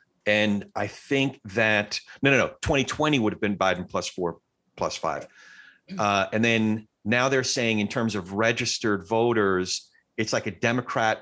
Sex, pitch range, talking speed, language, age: male, 100-125 Hz, 165 wpm, English, 40-59